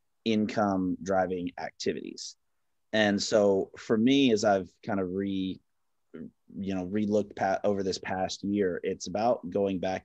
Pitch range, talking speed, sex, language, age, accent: 95-105 Hz, 145 wpm, male, English, 30-49, American